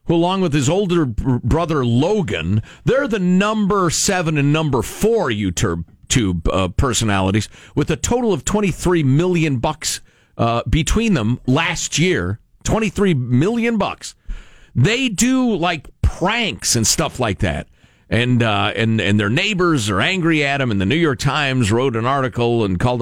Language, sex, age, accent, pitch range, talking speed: English, male, 50-69, American, 110-175 Hz, 160 wpm